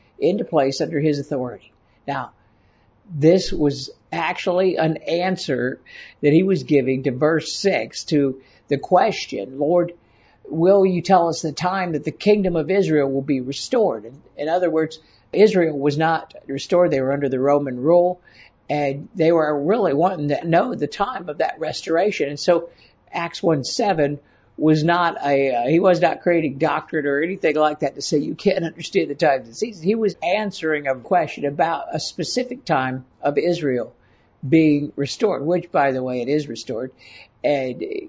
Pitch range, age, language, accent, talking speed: 140-180 Hz, 60-79, English, American, 170 wpm